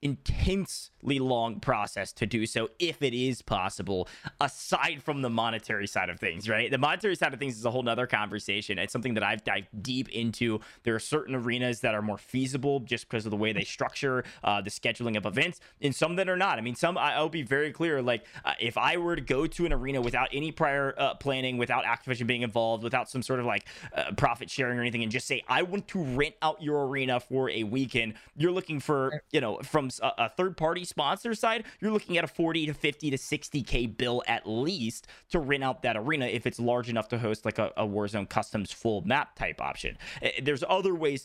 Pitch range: 115-150 Hz